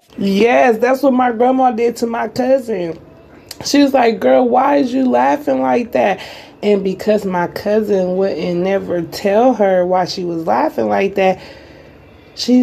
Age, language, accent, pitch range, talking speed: 30-49, English, American, 185-230 Hz, 160 wpm